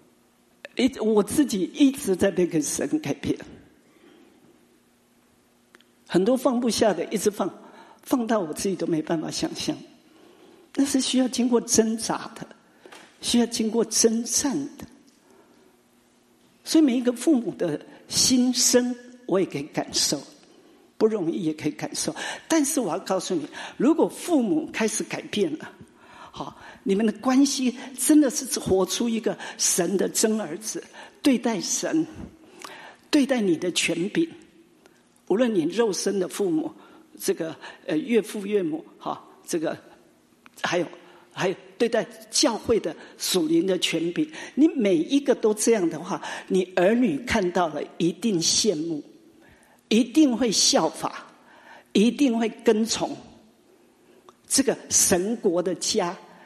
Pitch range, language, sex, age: 200-300 Hz, English, male, 50-69